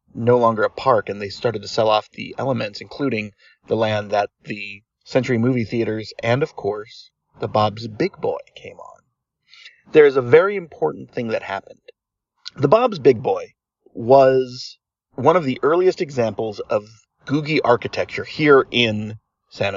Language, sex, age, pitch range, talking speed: English, male, 30-49, 115-180 Hz, 160 wpm